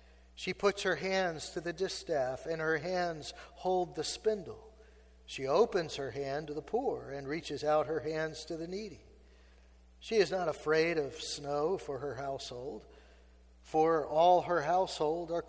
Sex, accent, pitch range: male, American, 135-180 Hz